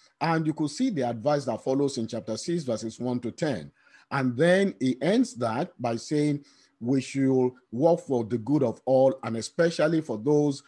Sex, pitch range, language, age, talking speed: male, 125-180 Hz, English, 50-69, 190 wpm